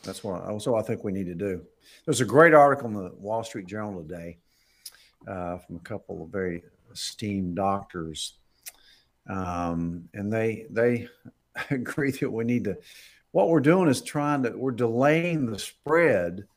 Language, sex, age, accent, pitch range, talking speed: English, male, 50-69, American, 95-125 Hz, 165 wpm